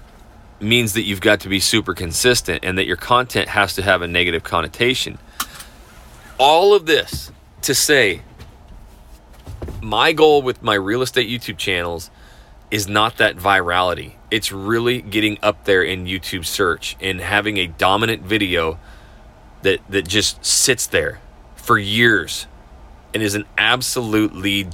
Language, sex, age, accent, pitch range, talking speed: English, male, 30-49, American, 90-115 Hz, 145 wpm